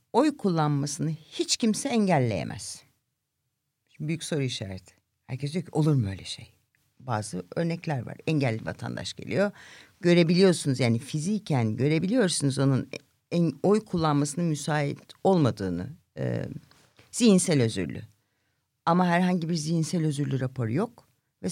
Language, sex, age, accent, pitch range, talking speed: Turkish, female, 60-79, native, 130-185 Hz, 115 wpm